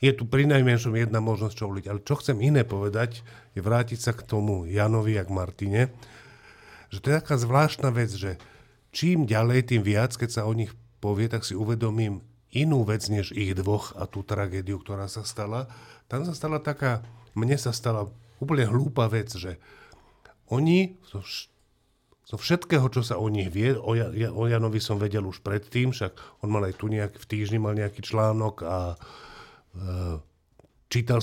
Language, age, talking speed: Slovak, 50-69, 175 wpm